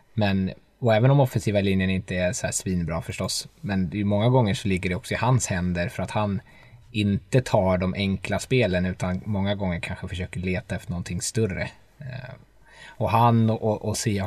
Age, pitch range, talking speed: 20-39, 95-110 Hz, 180 wpm